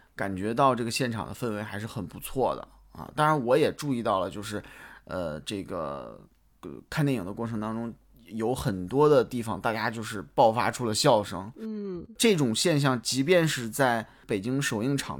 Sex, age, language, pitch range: male, 20-39, Chinese, 110-140 Hz